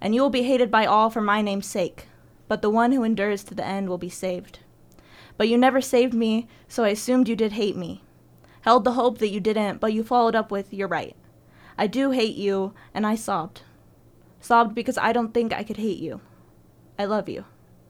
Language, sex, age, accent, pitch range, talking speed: English, female, 20-39, American, 200-230 Hz, 220 wpm